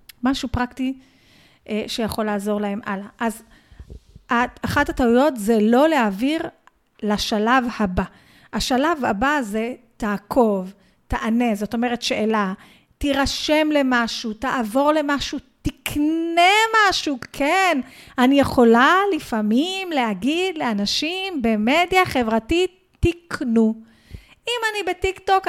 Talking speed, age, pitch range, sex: 95 wpm, 40-59, 230-310 Hz, female